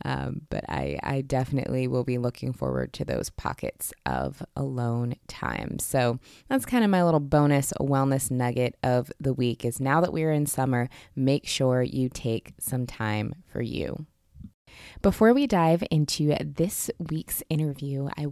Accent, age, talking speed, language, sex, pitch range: American, 20-39, 165 wpm, English, female, 135-175 Hz